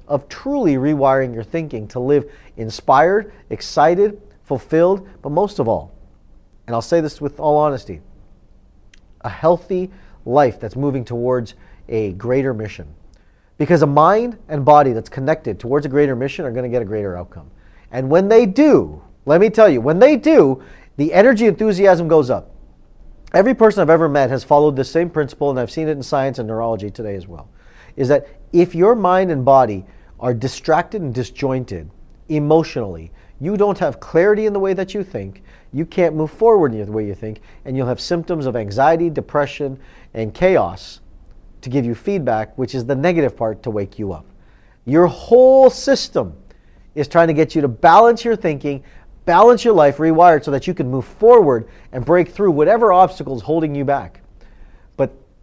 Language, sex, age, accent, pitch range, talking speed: English, male, 40-59, American, 115-170 Hz, 180 wpm